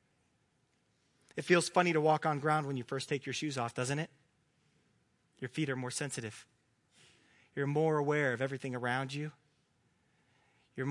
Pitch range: 135-170 Hz